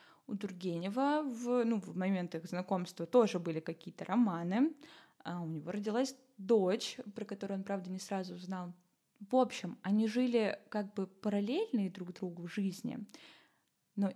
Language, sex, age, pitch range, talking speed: Russian, female, 10-29, 195-235 Hz, 150 wpm